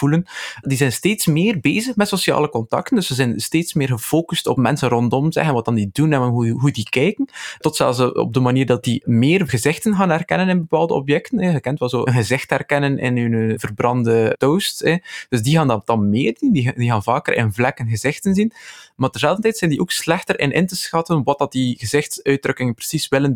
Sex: male